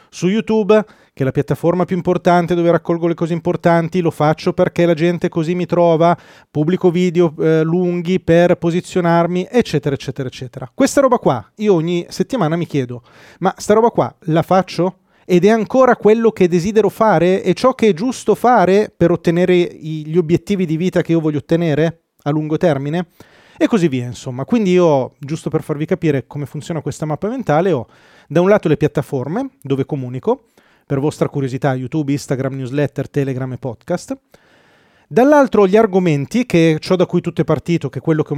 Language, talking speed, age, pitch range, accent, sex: Italian, 185 wpm, 30-49, 150-190 Hz, native, male